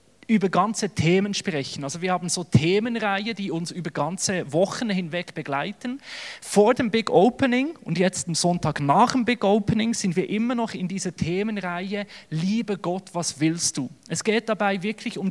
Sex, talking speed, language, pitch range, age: male, 175 wpm, German, 175-220 Hz, 30-49